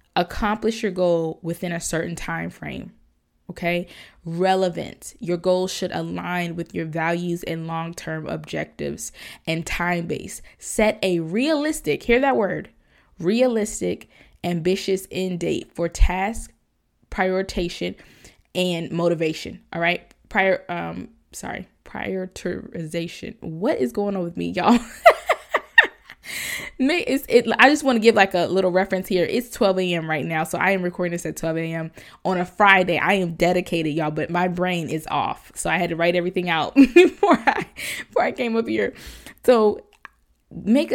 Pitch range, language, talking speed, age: 165-195 Hz, English, 150 wpm, 20-39